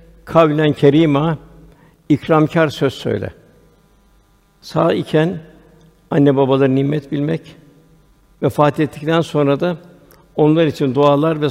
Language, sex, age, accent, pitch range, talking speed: Turkish, male, 60-79, native, 135-160 Hz, 100 wpm